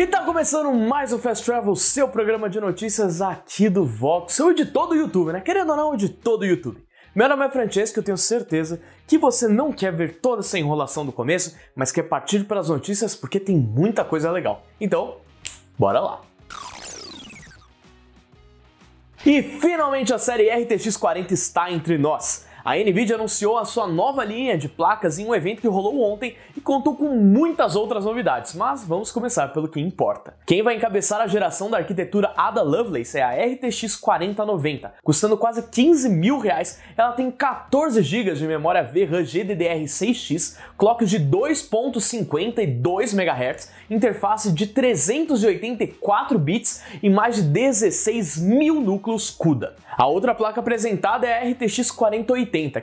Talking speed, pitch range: 165 wpm, 180-245 Hz